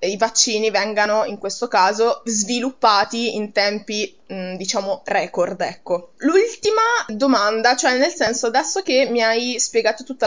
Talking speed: 130 wpm